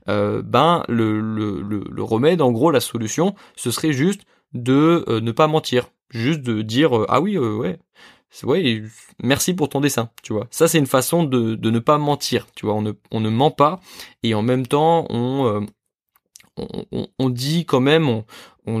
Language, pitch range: French, 115-145 Hz